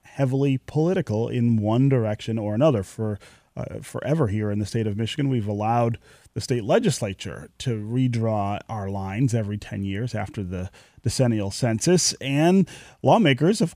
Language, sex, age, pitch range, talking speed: English, male, 30-49, 110-145 Hz, 155 wpm